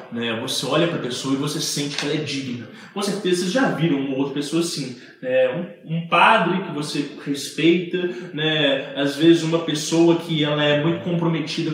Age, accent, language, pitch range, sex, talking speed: 20-39, Brazilian, English, 145-180 Hz, male, 185 wpm